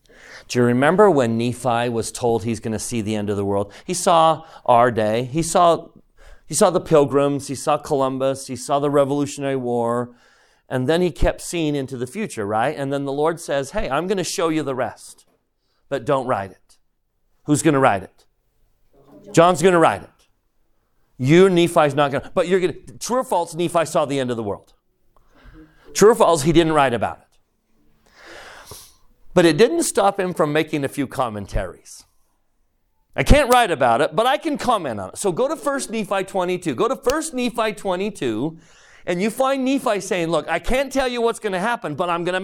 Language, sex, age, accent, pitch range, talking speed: English, male, 40-59, American, 130-190 Hz, 200 wpm